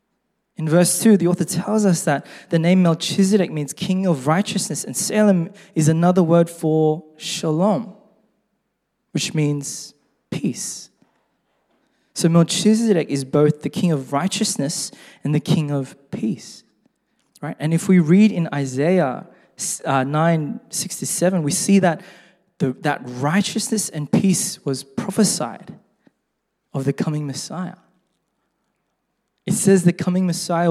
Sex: male